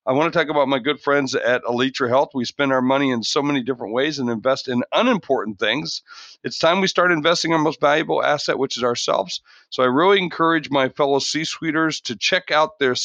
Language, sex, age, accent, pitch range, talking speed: English, male, 50-69, American, 125-160 Hz, 220 wpm